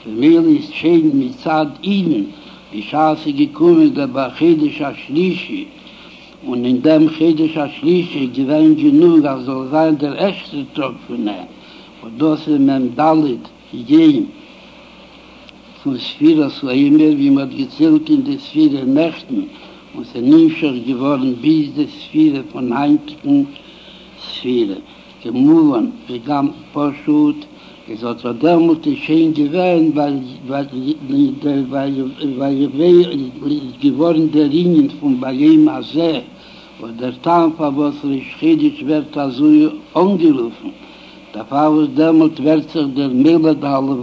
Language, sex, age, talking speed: Hebrew, male, 60-79, 135 wpm